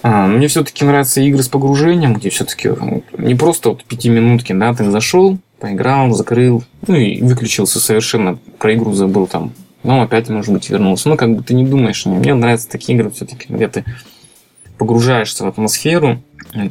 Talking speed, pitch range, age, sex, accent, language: 170 wpm, 100-125 Hz, 20-39, male, native, Russian